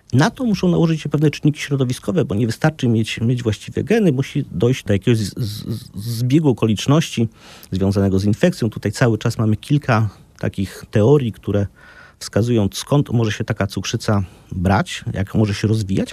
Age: 40-59